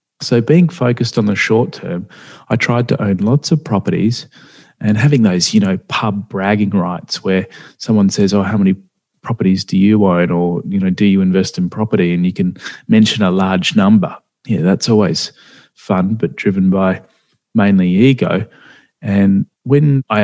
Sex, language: male, English